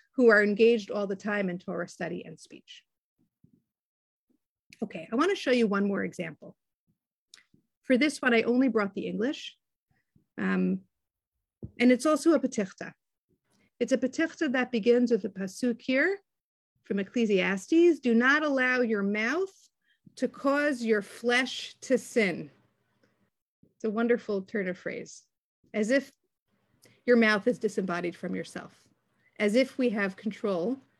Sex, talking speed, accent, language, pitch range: female, 145 wpm, American, English, 200-250 Hz